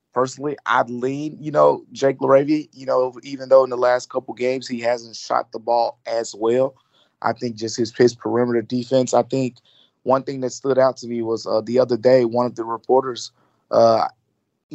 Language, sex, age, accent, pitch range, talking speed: English, male, 20-39, American, 115-130 Hz, 200 wpm